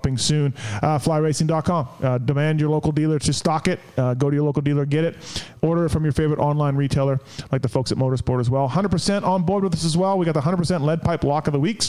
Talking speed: 245 wpm